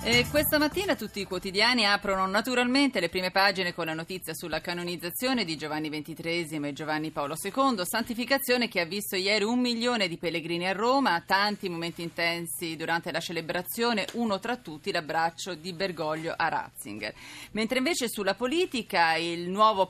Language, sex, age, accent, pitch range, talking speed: Italian, female, 30-49, native, 175-245 Hz, 165 wpm